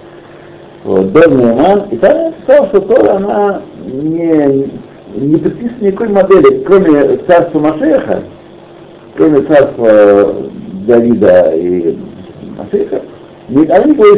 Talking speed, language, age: 95 wpm, Russian, 60-79